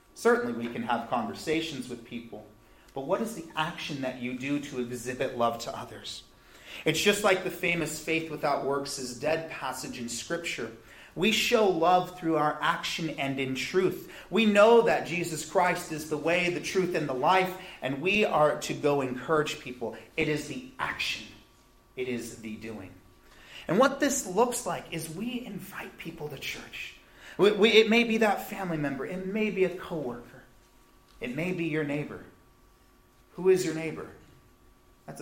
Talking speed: 175 wpm